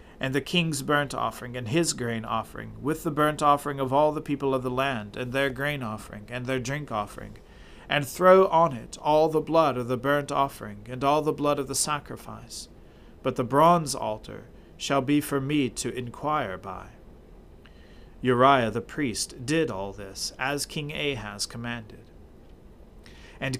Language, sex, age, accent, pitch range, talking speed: English, male, 40-59, American, 115-150 Hz, 175 wpm